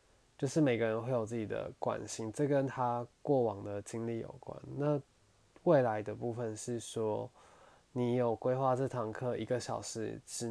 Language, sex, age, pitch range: Chinese, male, 20-39, 110-125 Hz